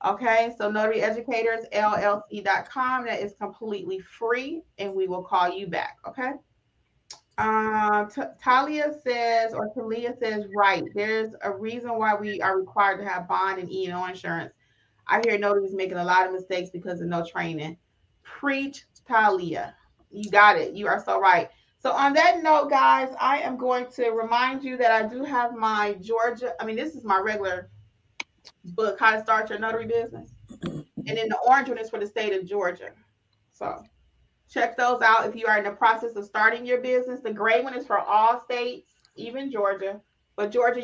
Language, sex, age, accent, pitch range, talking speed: English, female, 30-49, American, 200-245 Hz, 180 wpm